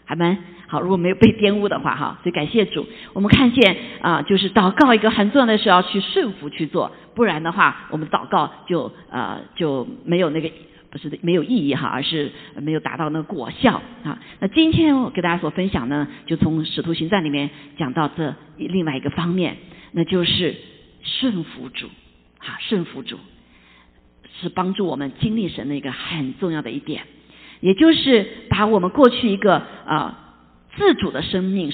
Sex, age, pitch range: female, 50-69, 160-245 Hz